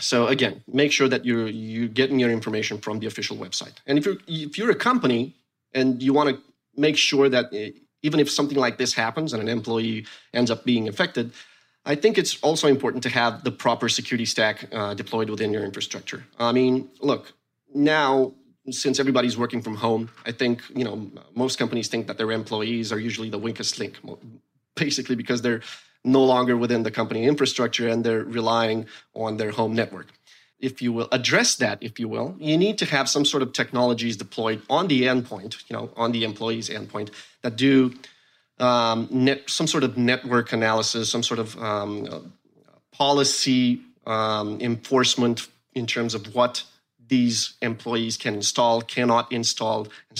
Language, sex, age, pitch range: English, male, 30-49, 115-135 Hz